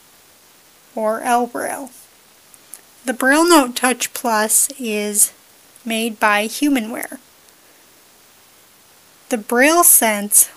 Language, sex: English, female